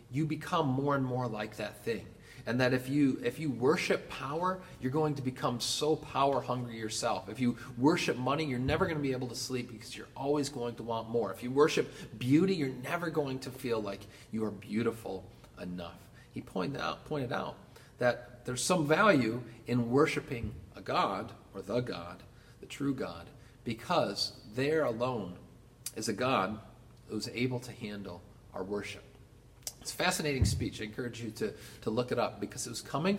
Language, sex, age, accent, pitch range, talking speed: English, male, 40-59, American, 105-135 Hz, 185 wpm